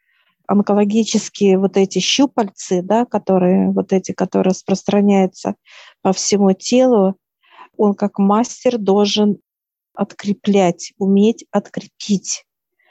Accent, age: native, 50-69